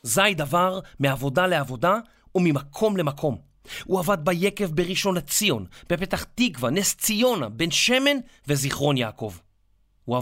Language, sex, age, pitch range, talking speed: Hebrew, male, 30-49, 130-195 Hz, 115 wpm